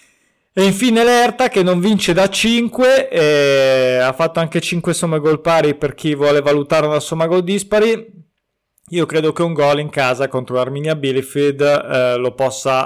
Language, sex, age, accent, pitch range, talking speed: Italian, male, 20-39, native, 145-180 Hz, 175 wpm